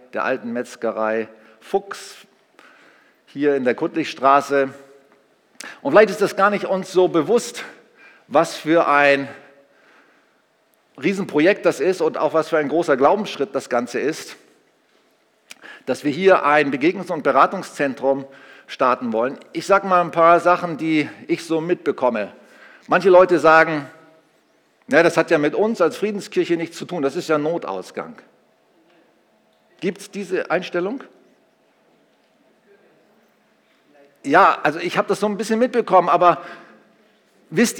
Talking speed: 135 wpm